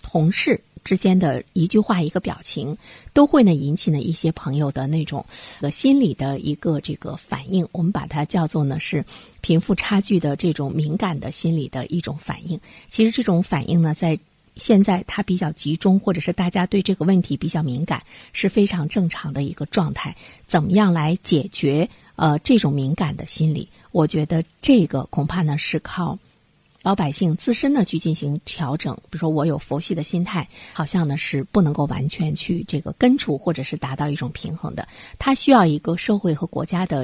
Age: 50-69